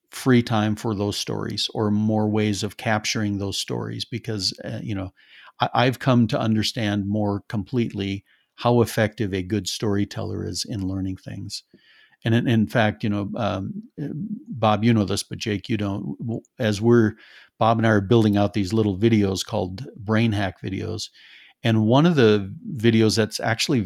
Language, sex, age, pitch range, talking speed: English, male, 50-69, 100-115 Hz, 170 wpm